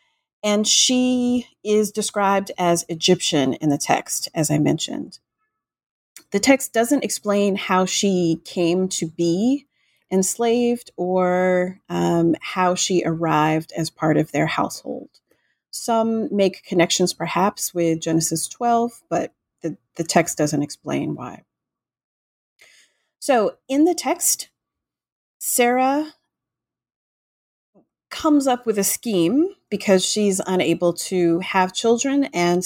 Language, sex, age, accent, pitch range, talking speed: English, female, 30-49, American, 165-220 Hz, 115 wpm